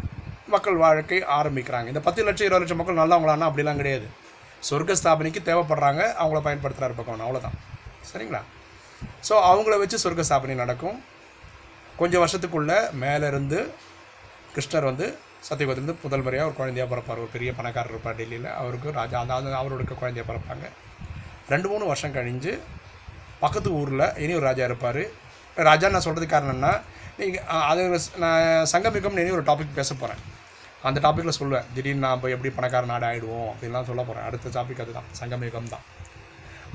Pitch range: 120-155 Hz